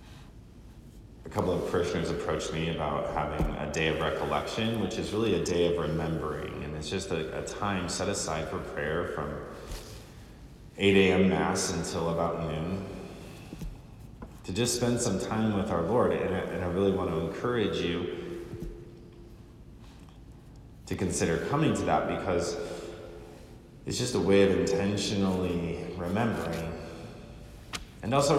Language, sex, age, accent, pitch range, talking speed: English, male, 30-49, American, 80-100 Hz, 140 wpm